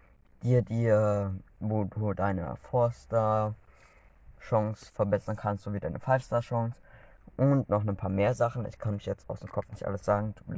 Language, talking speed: German, 170 wpm